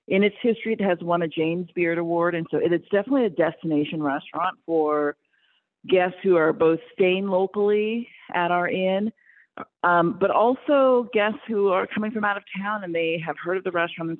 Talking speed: 195 wpm